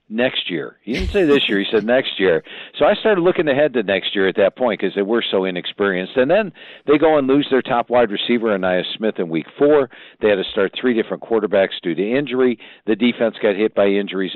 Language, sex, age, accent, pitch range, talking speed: English, male, 50-69, American, 100-135 Hz, 245 wpm